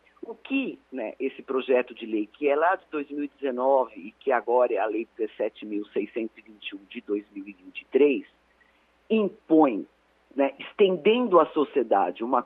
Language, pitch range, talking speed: Portuguese, 125-205 Hz, 130 wpm